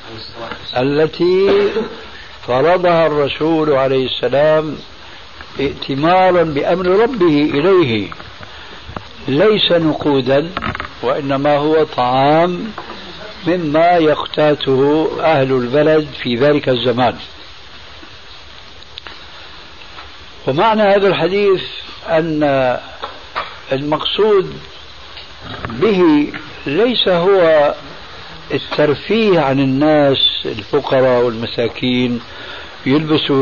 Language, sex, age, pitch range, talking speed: Arabic, male, 60-79, 135-175 Hz, 65 wpm